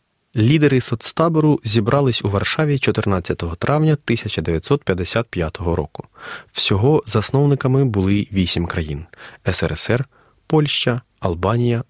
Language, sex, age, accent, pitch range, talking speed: Ukrainian, male, 20-39, native, 95-130 Hz, 85 wpm